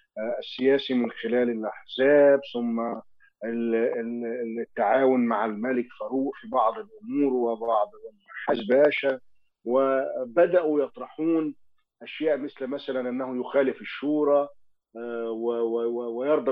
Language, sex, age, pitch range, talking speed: Arabic, male, 50-69, 120-165 Hz, 85 wpm